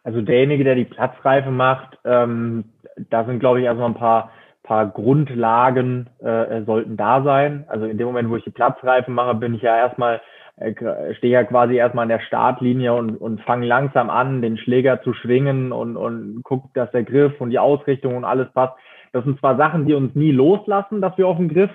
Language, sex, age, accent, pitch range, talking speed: German, male, 20-39, German, 120-150 Hz, 205 wpm